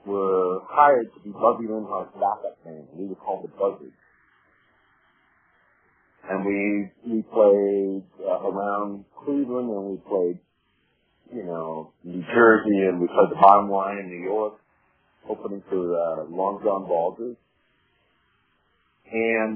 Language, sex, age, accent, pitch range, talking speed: English, male, 40-59, American, 95-115 Hz, 130 wpm